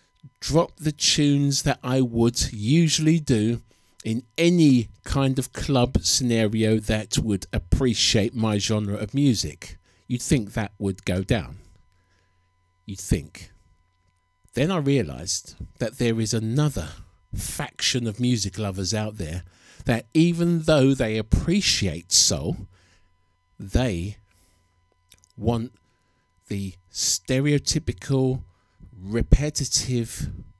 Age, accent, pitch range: 50-69, British, 90-125 Hz